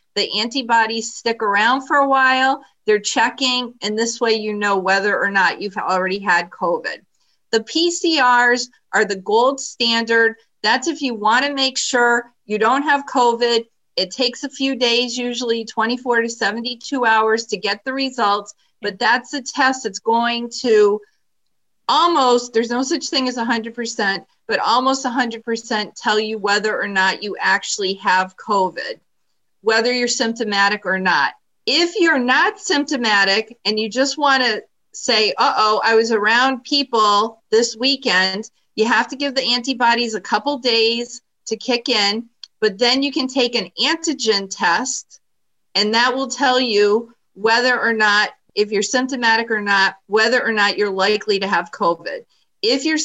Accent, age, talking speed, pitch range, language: American, 40-59, 160 wpm, 210-260 Hz, English